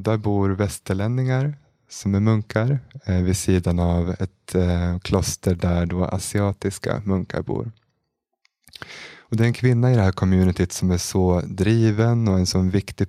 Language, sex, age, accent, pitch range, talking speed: Swedish, male, 20-39, native, 95-115 Hz, 160 wpm